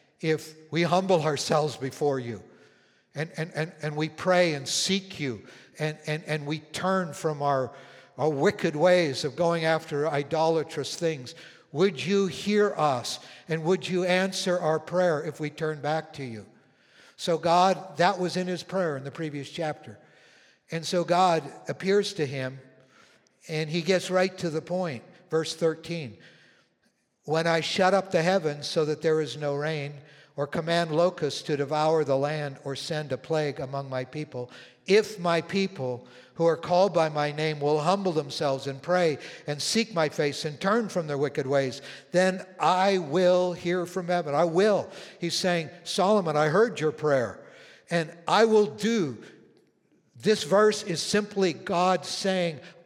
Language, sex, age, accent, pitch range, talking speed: English, male, 60-79, American, 150-180 Hz, 165 wpm